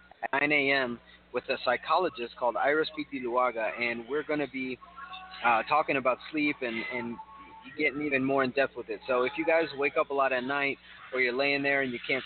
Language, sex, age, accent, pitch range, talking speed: English, male, 30-49, American, 130-150 Hz, 210 wpm